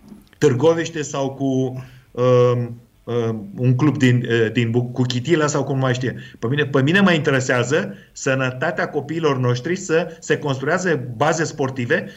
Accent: native